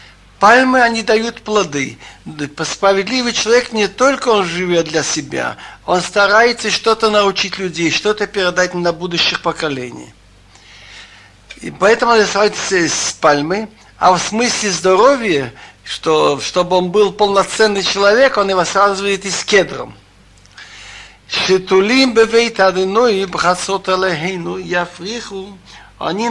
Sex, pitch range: male, 150-205 Hz